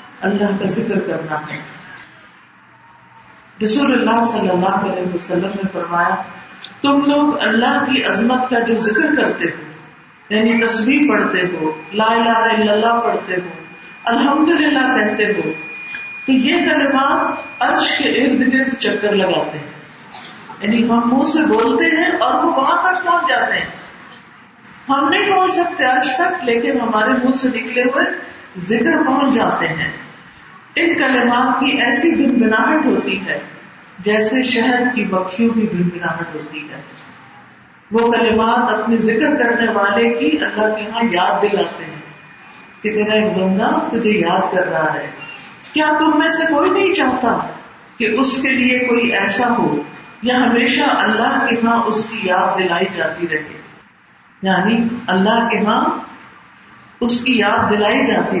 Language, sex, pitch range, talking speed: Urdu, female, 200-260 Hz, 150 wpm